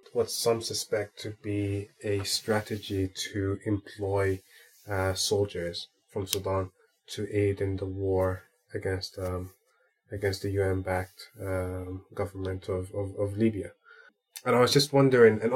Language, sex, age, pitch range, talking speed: English, male, 20-39, 100-115 Hz, 135 wpm